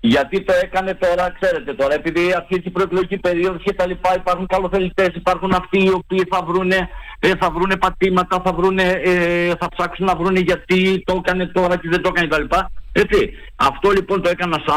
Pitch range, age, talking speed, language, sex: 135-185 Hz, 50-69, 195 wpm, Greek, male